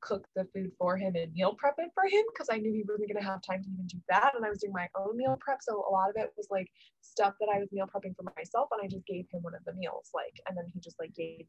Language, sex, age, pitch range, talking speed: English, female, 20-39, 190-240 Hz, 330 wpm